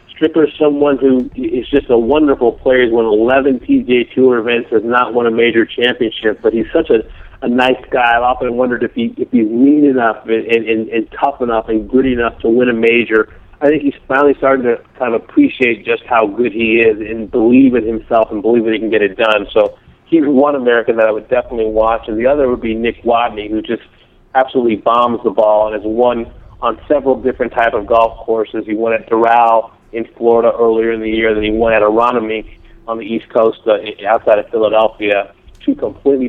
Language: English